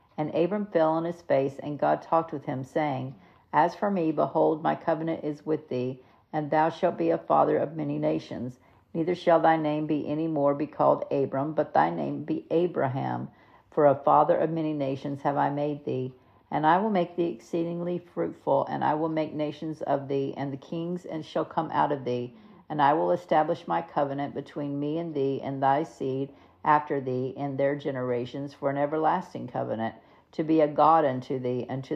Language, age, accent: English, 50-69, American